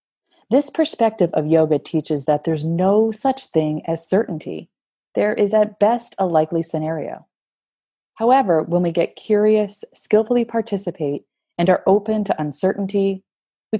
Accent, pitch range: American, 155-205 Hz